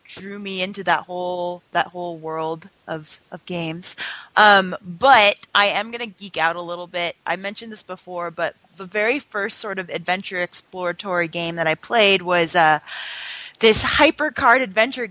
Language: English